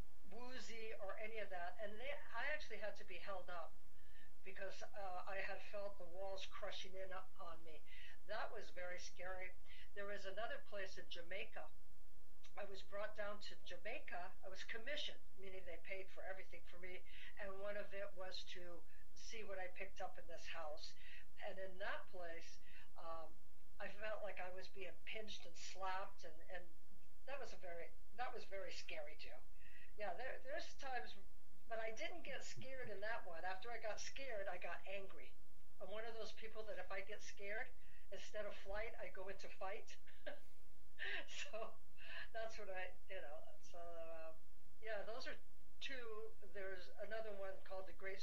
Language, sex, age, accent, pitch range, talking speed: English, female, 60-79, American, 180-215 Hz, 175 wpm